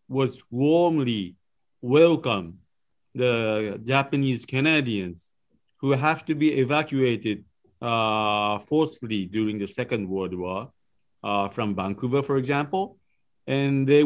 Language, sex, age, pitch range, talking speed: English, male, 50-69, 110-145 Hz, 105 wpm